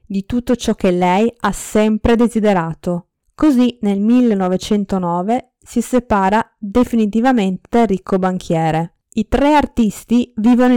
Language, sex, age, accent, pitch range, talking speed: Italian, female, 20-39, native, 185-230 Hz, 110 wpm